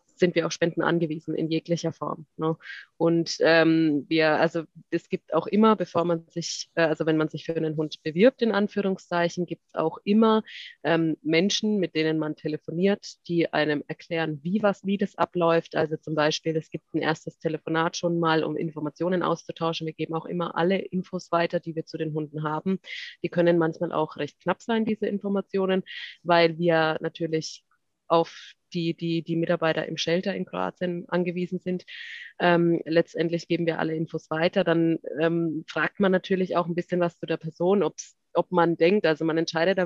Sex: female